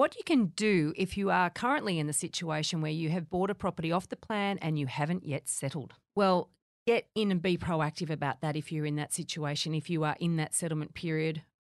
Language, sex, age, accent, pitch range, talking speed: English, female, 40-59, Australian, 155-210 Hz, 230 wpm